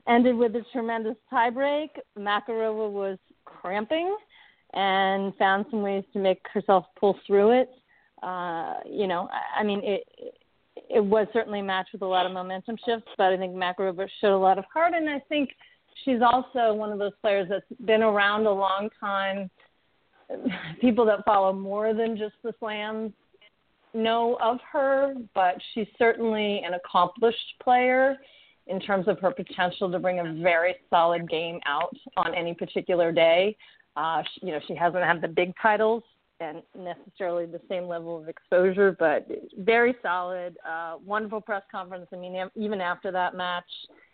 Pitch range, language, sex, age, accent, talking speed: 180-225 Hz, English, female, 40-59, American, 165 wpm